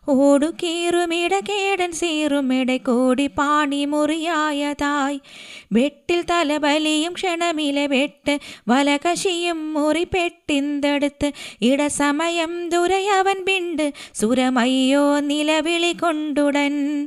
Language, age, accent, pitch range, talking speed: Malayalam, 20-39, native, 220-295 Hz, 65 wpm